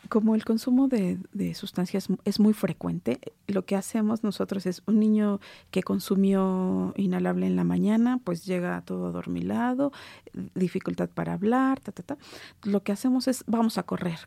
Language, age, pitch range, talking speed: Spanish, 40-59, 165-235 Hz, 165 wpm